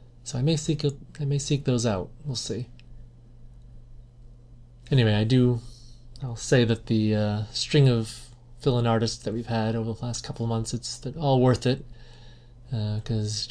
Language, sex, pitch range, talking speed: English, male, 115-125 Hz, 180 wpm